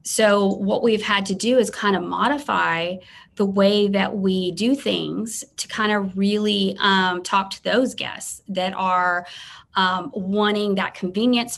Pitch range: 175-205 Hz